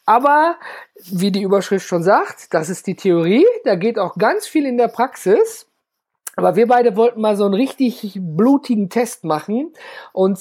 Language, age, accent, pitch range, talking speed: German, 50-69, German, 195-255 Hz, 175 wpm